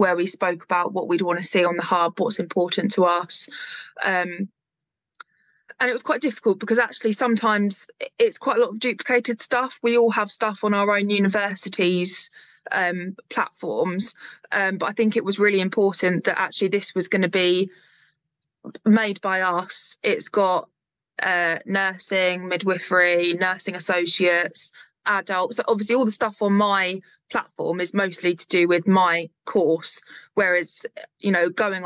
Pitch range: 180-210 Hz